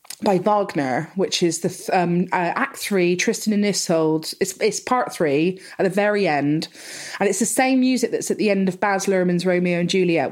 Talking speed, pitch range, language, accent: 205 wpm, 165-215 Hz, English, British